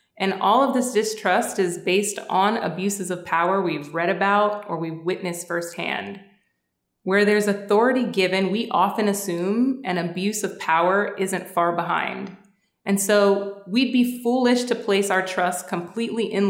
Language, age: English, 20-39